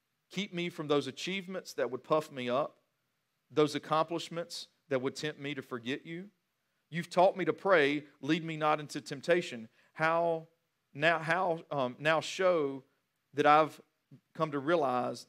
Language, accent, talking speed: English, American, 155 wpm